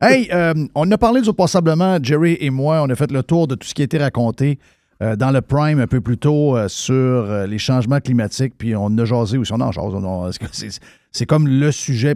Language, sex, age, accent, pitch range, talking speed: French, male, 50-69, Canadian, 120-155 Hz, 265 wpm